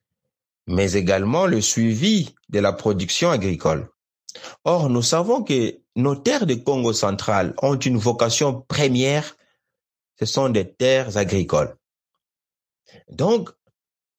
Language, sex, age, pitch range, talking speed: French, male, 60-79, 125-185 Hz, 115 wpm